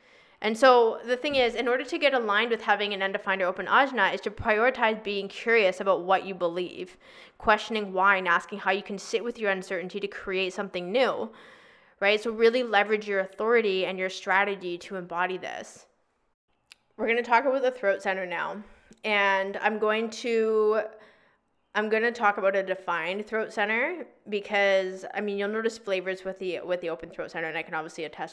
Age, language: 20-39, English